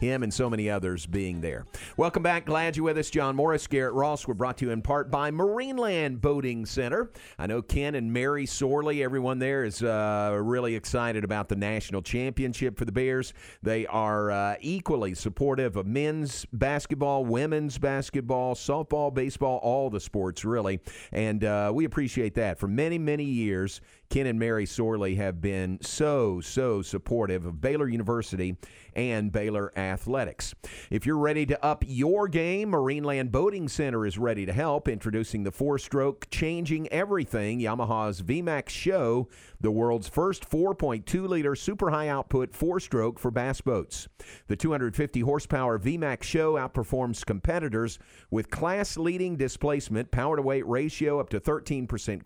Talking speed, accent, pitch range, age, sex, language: 155 wpm, American, 110-145 Hz, 50-69, male, English